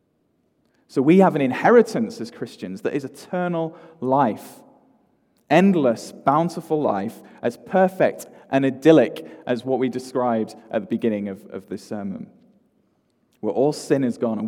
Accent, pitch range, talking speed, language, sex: British, 115-190 Hz, 145 wpm, English, male